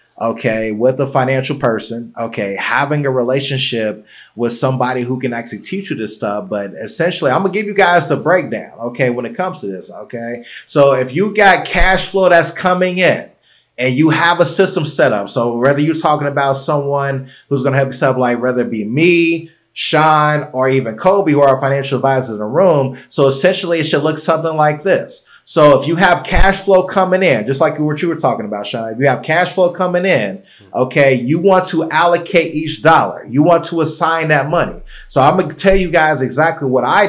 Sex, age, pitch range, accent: male, 30-49, 130-175 Hz, American